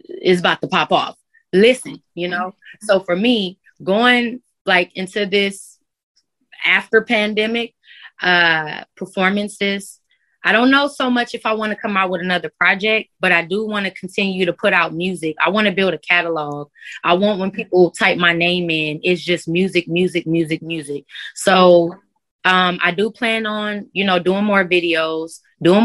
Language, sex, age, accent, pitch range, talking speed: English, female, 20-39, American, 165-205 Hz, 175 wpm